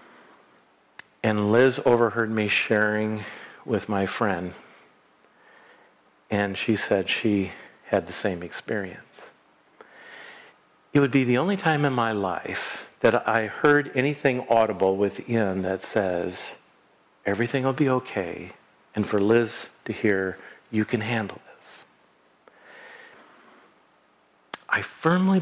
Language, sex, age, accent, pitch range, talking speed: English, male, 50-69, American, 100-130 Hz, 115 wpm